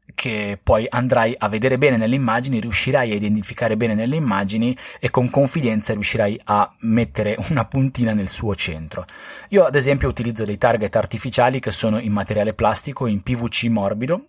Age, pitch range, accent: 30-49, 105-130 Hz, native